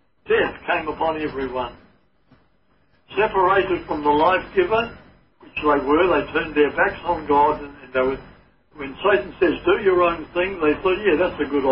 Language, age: English, 60-79